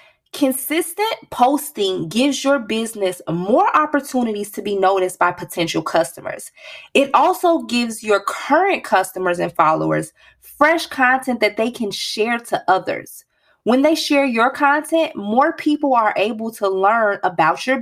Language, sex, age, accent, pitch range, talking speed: English, female, 20-39, American, 200-285 Hz, 140 wpm